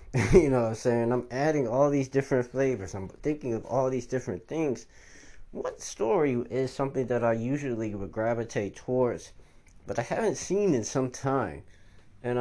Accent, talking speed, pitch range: American, 175 wpm, 105-135 Hz